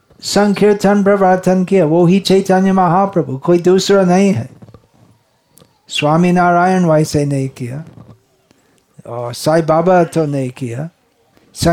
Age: 50-69